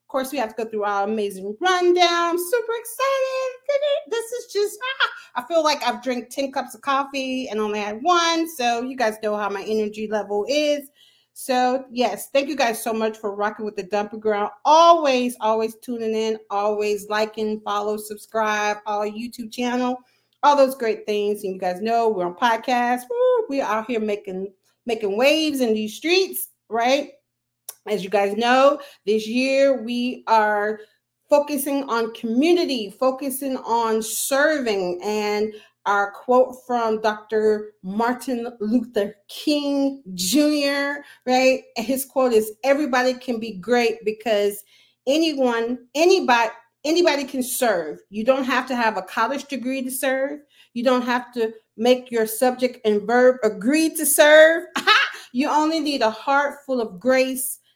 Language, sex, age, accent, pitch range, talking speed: English, female, 40-59, American, 215-280 Hz, 155 wpm